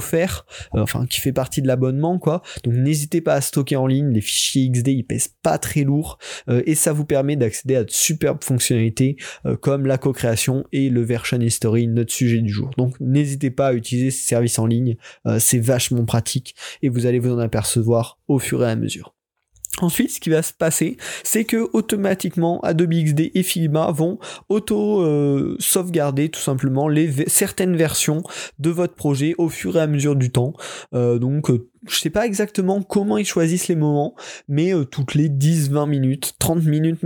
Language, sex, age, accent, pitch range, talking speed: French, male, 20-39, French, 130-165 Hz, 200 wpm